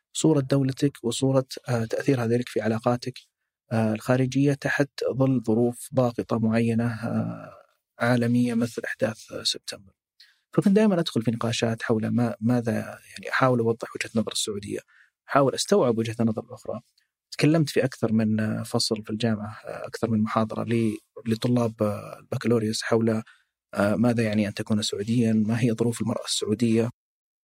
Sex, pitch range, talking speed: male, 110-120 Hz, 130 wpm